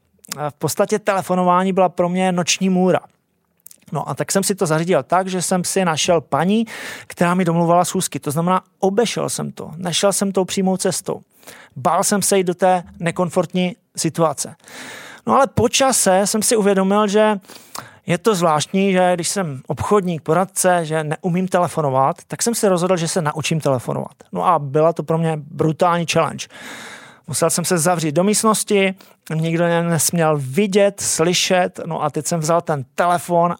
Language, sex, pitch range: Czech, male, 155-190 Hz